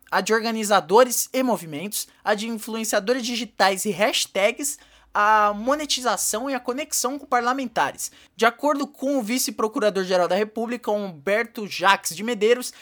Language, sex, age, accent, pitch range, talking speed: Portuguese, male, 20-39, Brazilian, 205-250 Hz, 135 wpm